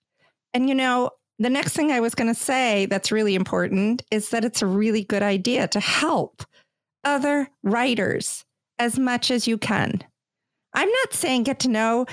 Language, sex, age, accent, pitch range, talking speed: English, female, 50-69, American, 195-255 Hz, 180 wpm